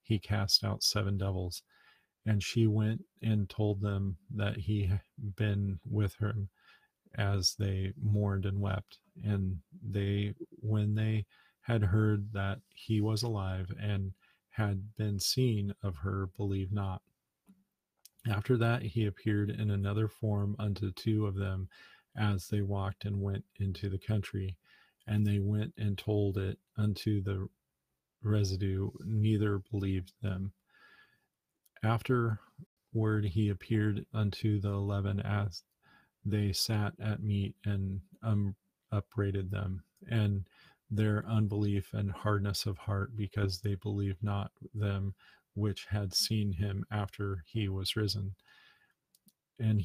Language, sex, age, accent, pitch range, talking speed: English, male, 40-59, American, 100-110 Hz, 130 wpm